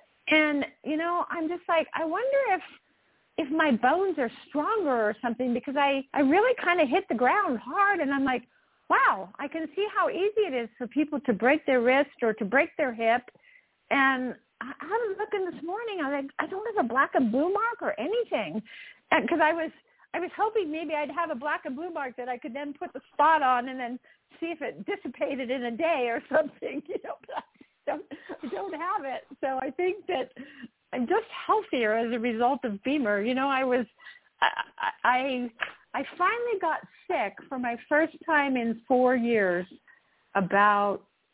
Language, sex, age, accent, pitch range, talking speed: English, female, 50-69, American, 230-330 Hz, 195 wpm